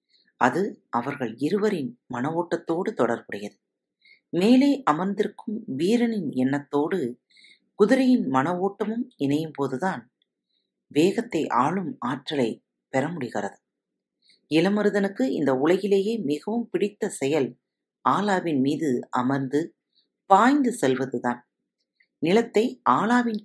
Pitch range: 145-225 Hz